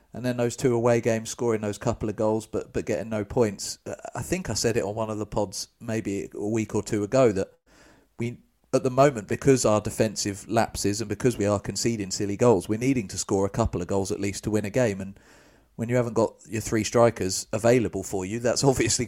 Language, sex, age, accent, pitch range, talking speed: English, male, 40-59, British, 100-120 Hz, 235 wpm